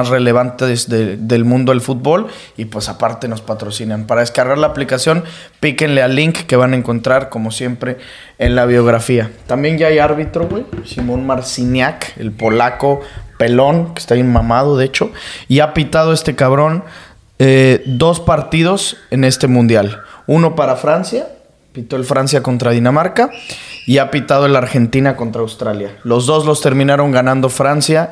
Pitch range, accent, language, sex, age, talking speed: 120-150 Hz, Mexican, English, male, 20-39, 160 wpm